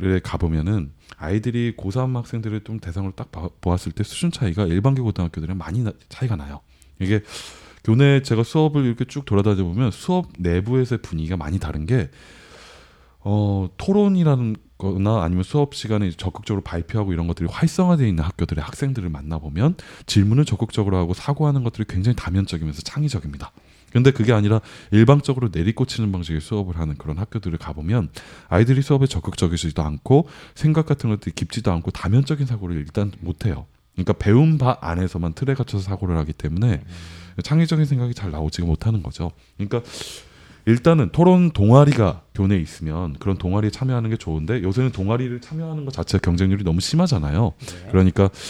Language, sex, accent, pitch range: Korean, male, native, 85-125 Hz